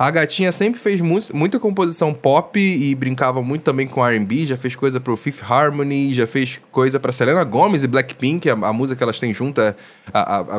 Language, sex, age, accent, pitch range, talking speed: Portuguese, male, 10-29, Brazilian, 120-165 Hz, 210 wpm